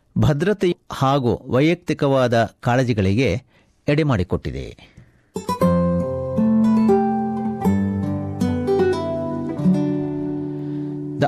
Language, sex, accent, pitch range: Kannada, male, native, 110-155 Hz